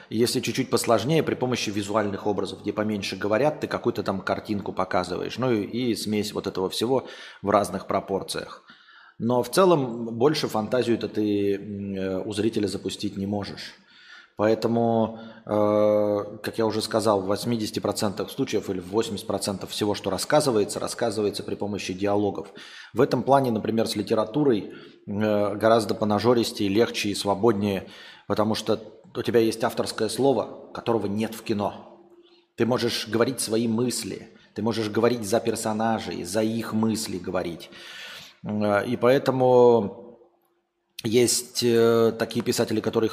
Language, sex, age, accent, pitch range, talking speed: Russian, male, 20-39, native, 105-120 Hz, 135 wpm